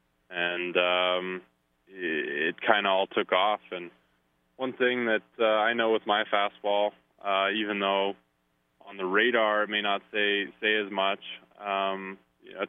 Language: English